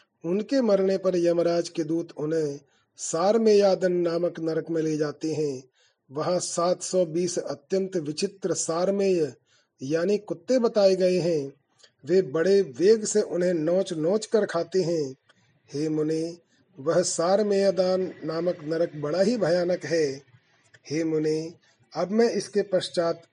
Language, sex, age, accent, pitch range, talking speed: Hindi, male, 40-59, native, 155-190 Hz, 130 wpm